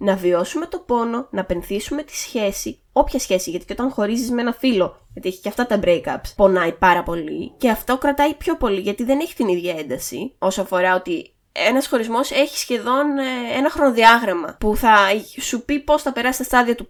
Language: Greek